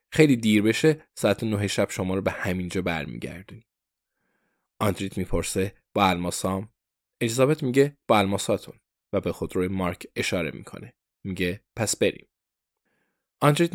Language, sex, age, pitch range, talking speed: Persian, male, 20-39, 95-125 Hz, 125 wpm